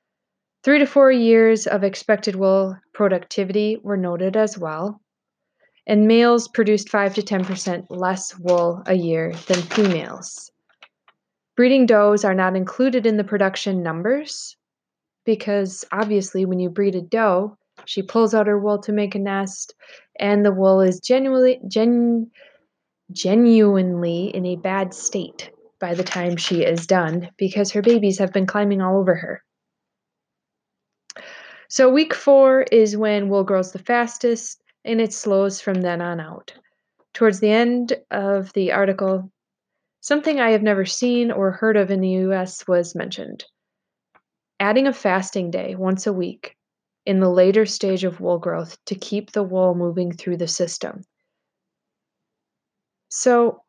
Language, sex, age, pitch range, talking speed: English, female, 20-39, 185-225 Hz, 150 wpm